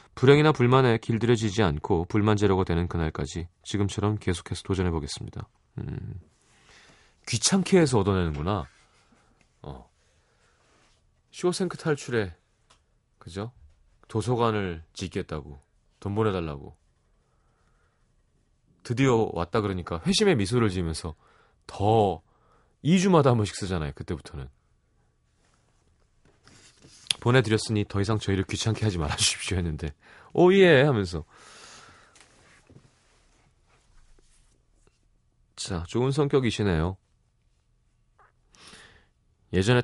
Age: 30-49